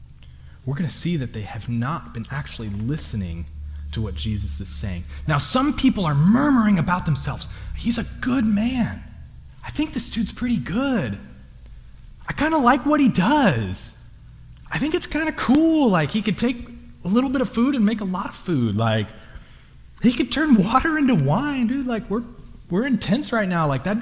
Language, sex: English, male